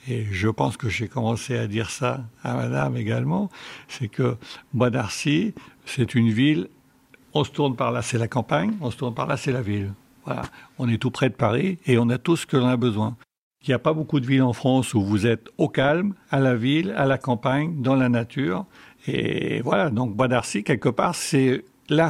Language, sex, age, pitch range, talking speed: French, male, 60-79, 110-135 Hz, 225 wpm